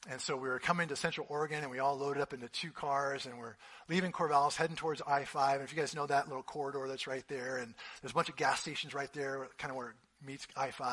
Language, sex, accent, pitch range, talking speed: English, male, American, 135-175 Hz, 270 wpm